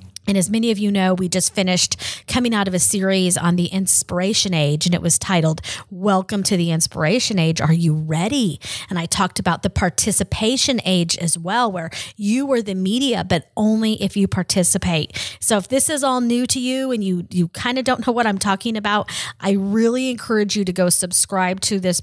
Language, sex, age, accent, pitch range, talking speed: English, female, 30-49, American, 170-220 Hz, 210 wpm